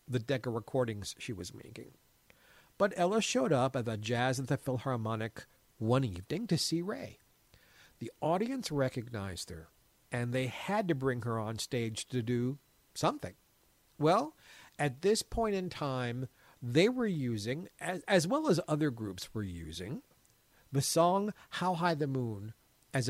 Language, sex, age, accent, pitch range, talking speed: English, male, 50-69, American, 120-160 Hz, 155 wpm